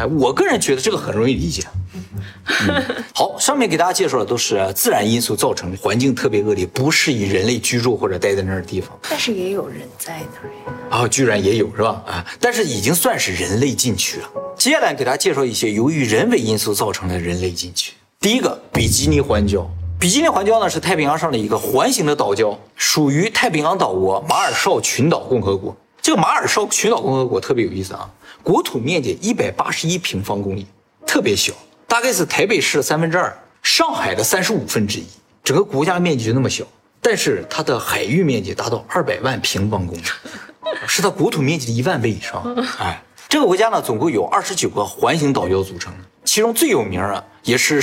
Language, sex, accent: Chinese, male, native